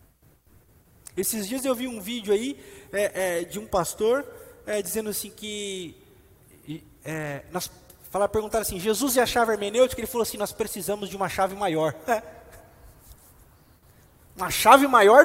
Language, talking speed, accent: Portuguese, 155 wpm, Brazilian